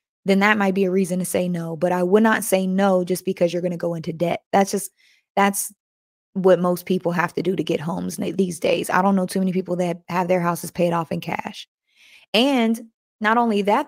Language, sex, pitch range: English, female, 180-210 Hz